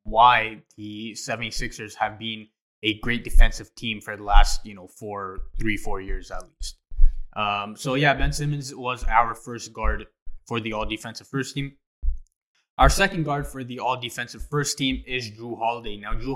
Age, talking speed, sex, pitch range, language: 20-39, 180 wpm, male, 105-130 Hz, English